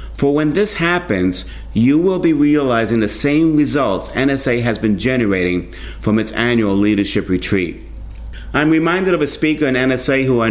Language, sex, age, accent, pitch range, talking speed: English, male, 50-69, American, 100-135 Hz, 165 wpm